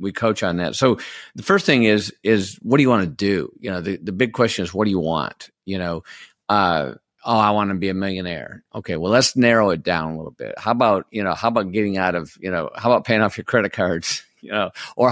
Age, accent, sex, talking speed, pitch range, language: 50-69, American, male, 265 wpm, 95-120 Hz, English